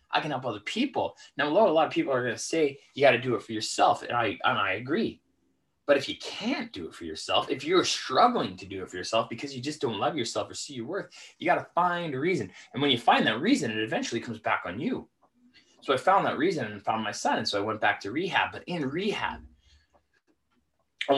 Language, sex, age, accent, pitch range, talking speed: English, male, 20-39, American, 110-145 Hz, 260 wpm